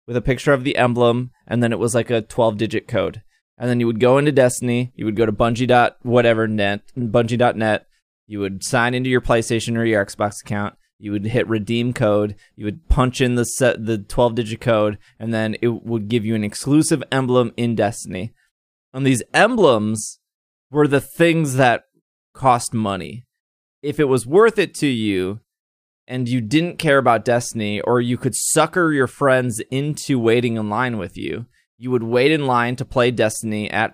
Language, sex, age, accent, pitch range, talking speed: English, male, 20-39, American, 110-130 Hz, 185 wpm